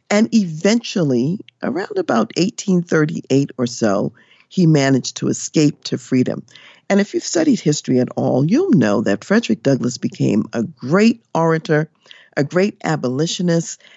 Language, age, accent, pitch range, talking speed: English, 50-69, American, 130-190 Hz, 140 wpm